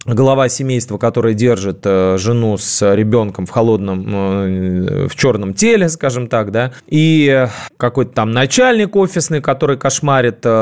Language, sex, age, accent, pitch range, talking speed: Russian, male, 20-39, native, 110-155 Hz, 125 wpm